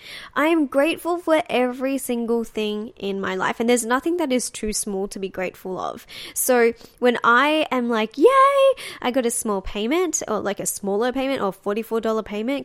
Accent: Australian